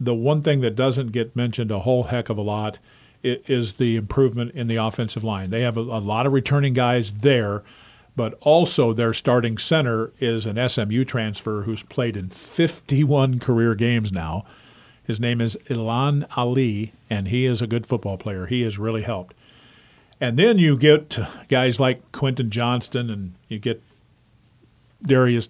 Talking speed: 170 wpm